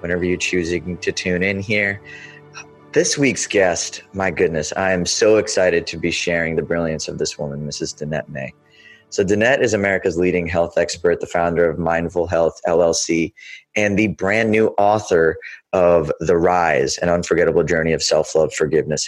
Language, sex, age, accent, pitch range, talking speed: English, male, 20-39, American, 85-105 Hz, 170 wpm